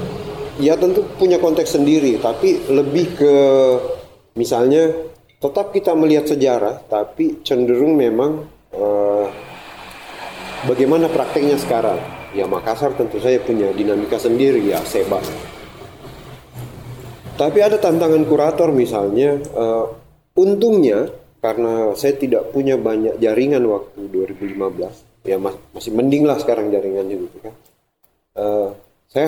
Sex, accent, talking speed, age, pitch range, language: male, native, 110 wpm, 30-49, 110-155 Hz, Indonesian